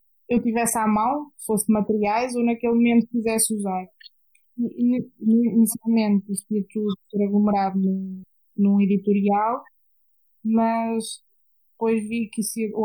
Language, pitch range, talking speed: Portuguese, 210-255 Hz, 115 wpm